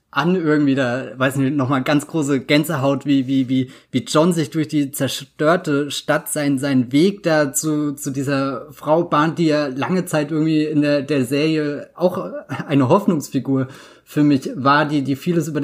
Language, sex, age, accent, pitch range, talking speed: German, male, 20-39, German, 135-165 Hz, 180 wpm